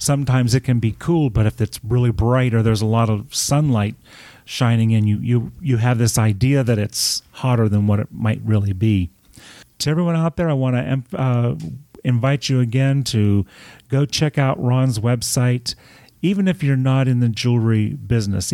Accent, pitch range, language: American, 110-130 Hz, English